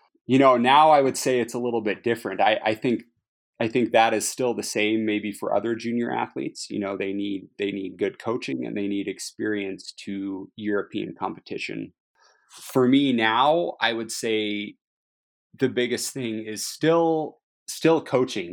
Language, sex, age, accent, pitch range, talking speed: English, male, 30-49, American, 100-115 Hz, 175 wpm